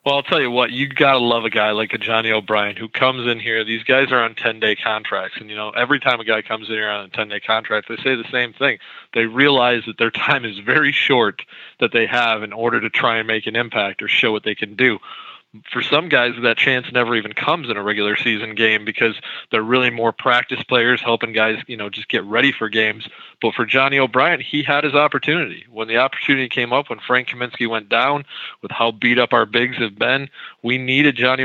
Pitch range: 110-130 Hz